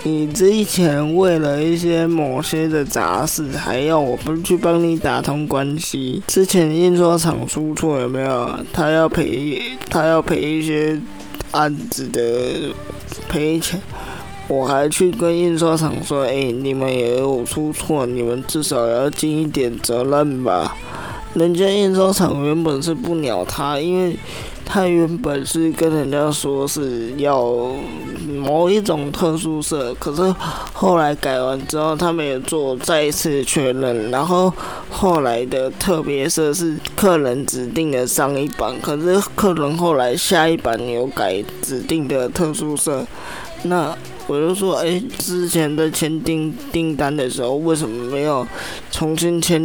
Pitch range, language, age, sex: 140-165 Hz, Chinese, 20-39, male